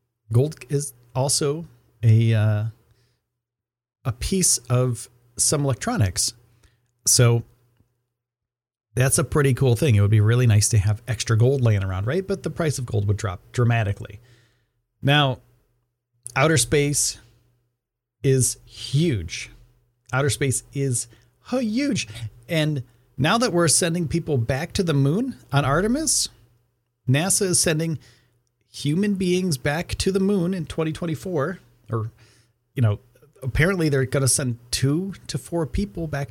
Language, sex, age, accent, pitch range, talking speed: English, male, 40-59, American, 115-150 Hz, 135 wpm